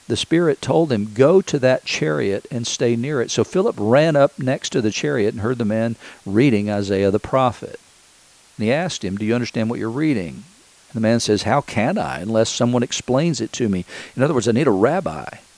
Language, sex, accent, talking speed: English, male, American, 225 wpm